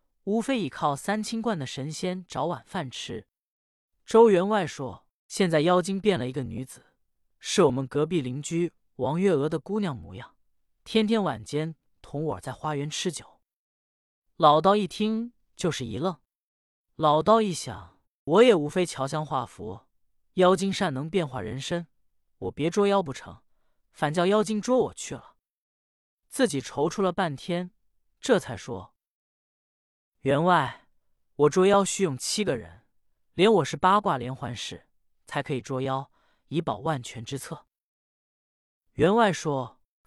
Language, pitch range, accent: Chinese, 130-185 Hz, native